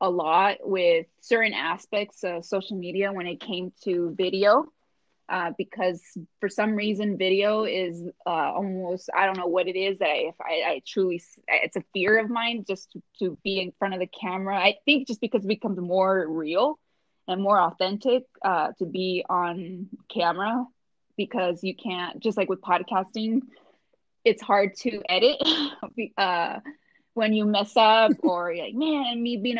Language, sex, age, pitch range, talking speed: English, female, 20-39, 185-230 Hz, 170 wpm